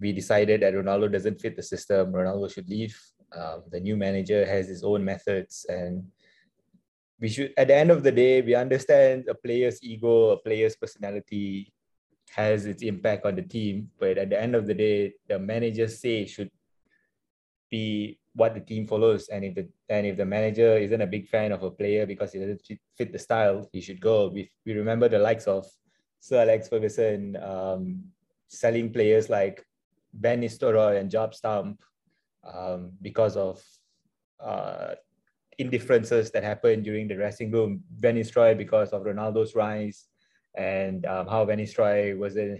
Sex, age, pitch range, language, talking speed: male, 20-39, 100-115 Hz, English, 170 wpm